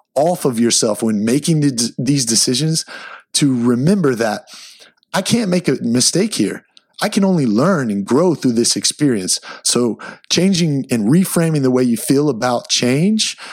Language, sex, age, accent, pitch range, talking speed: English, male, 30-49, American, 120-160 Hz, 155 wpm